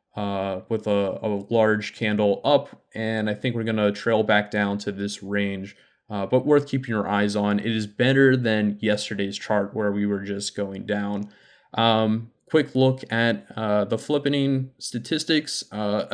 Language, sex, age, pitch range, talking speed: English, male, 20-39, 105-120 Hz, 175 wpm